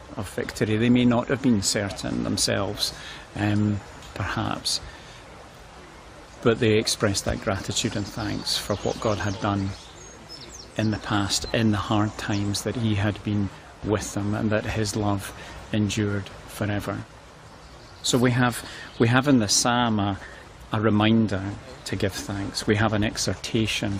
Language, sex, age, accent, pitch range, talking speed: English, male, 40-59, British, 100-110 Hz, 150 wpm